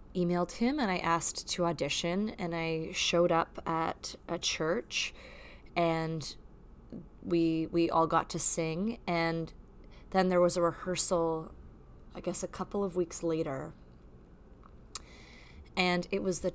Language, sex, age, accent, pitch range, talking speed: English, female, 20-39, American, 155-175 Hz, 140 wpm